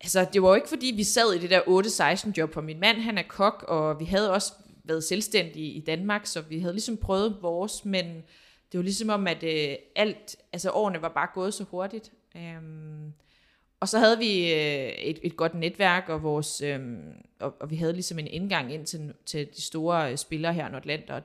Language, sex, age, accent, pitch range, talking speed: Danish, female, 20-39, native, 160-205 Hz, 200 wpm